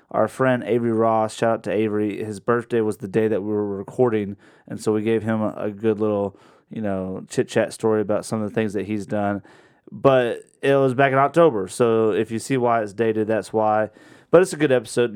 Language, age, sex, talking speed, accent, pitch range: English, 30-49, male, 225 wpm, American, 105-130 Hz